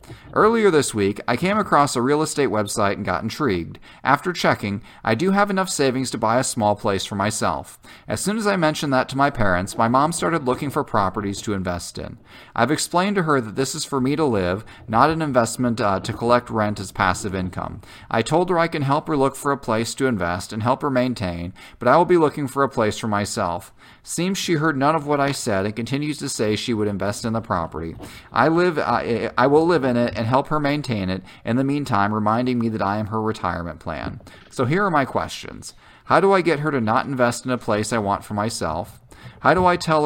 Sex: male